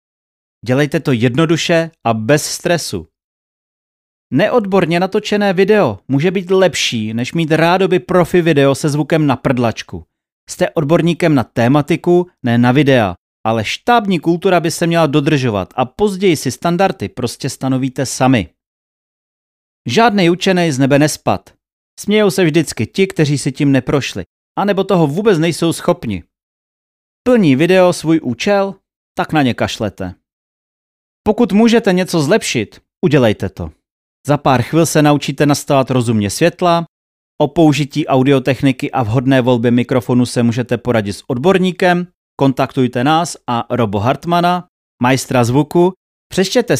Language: Czech